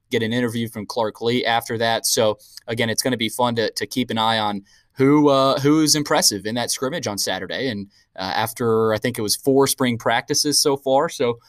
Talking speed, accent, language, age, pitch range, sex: 225 wpm, American, English, 20-39, 110-130 Hz, male